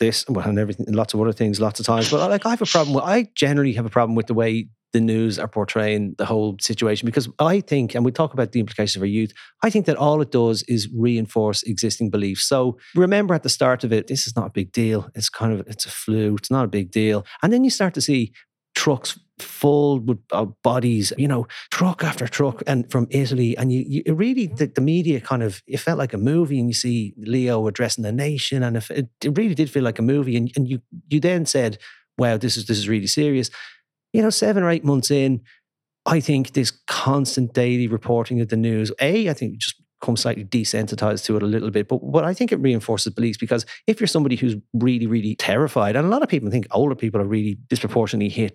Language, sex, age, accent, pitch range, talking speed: English, male, 30-49, Irish, 110-140 Hz, 240 wpm